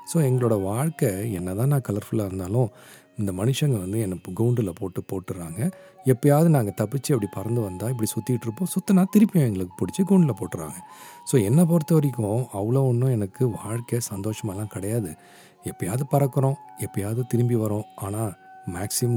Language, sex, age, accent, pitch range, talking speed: Tamil, male, 40-59, native, 95-125 Hz, 145 wpm